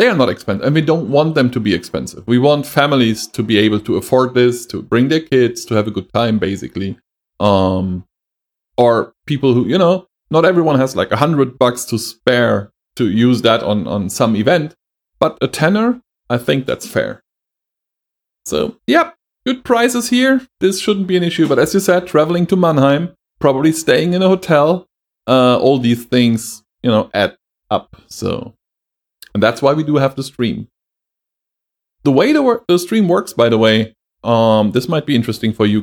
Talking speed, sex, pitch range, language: 195 wpm, male, 110-150 Hz, English